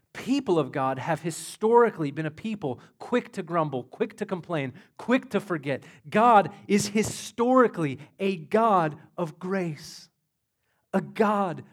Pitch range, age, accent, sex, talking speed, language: 130-200 Hz, 40-59, American, male, 135 wpm, English